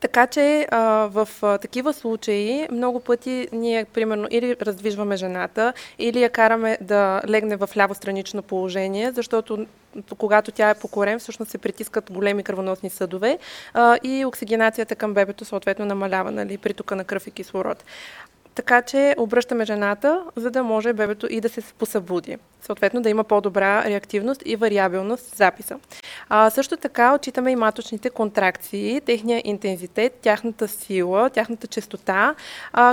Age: 20-39